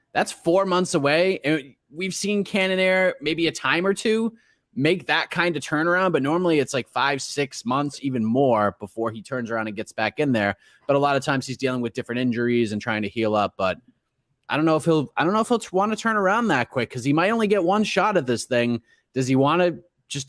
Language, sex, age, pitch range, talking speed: English, male, 30-49, 120-175 Hz, 250 wpm